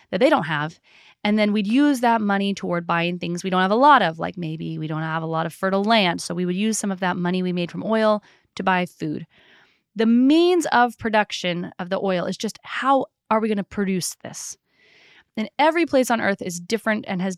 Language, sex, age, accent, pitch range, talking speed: English, female, 20-39, American, 180-240 Hz, 240 wpm